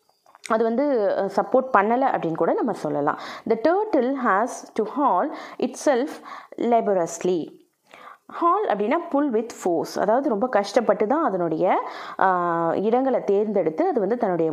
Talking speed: 130 wpm